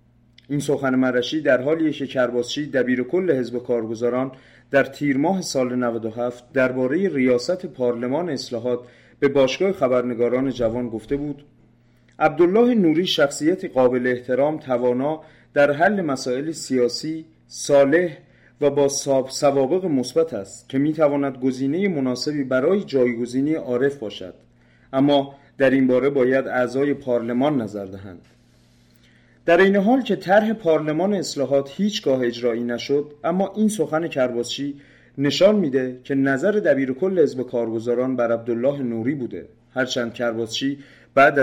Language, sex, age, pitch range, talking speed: Persian, male, 30-49, 125-155 Hz, 125 wpm